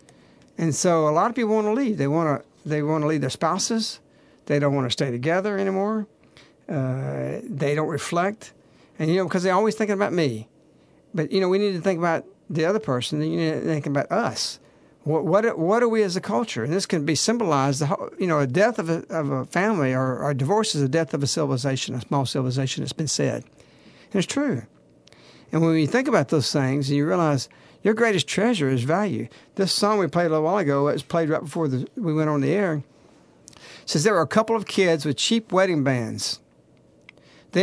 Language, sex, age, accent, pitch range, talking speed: English, male, 60-79, American, 140-190 Hz, 225 wpm